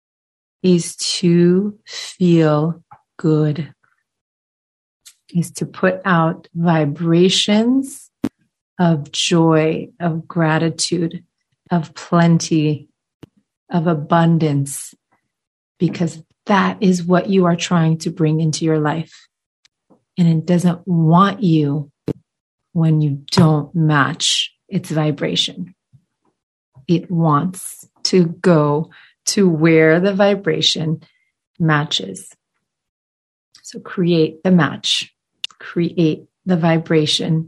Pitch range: 155-175 Hz